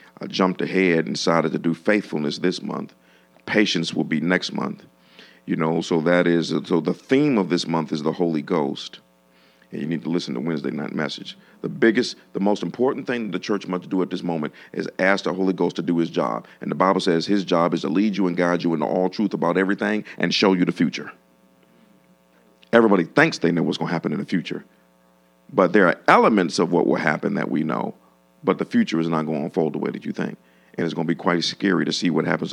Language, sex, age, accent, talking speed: English, male, 50-69, American, 240 wpm